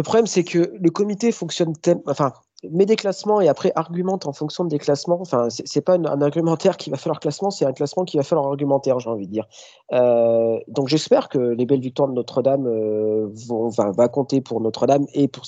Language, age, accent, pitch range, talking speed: French, 40-59, French, 115-155 Hz, 230 wpm